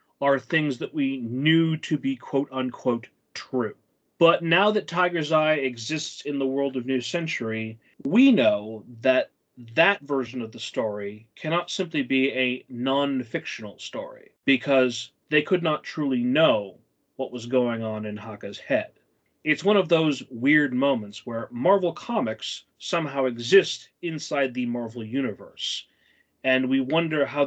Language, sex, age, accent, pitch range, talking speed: English, male, 30-49, American, 125-155 Hz, 145 wpm